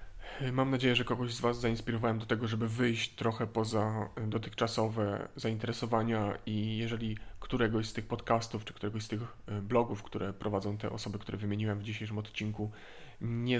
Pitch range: 105-120 Hz